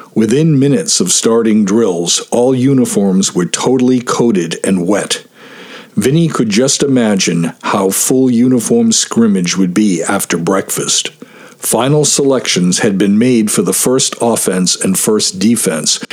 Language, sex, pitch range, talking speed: English, male, 100-140 Hz, 135 wpm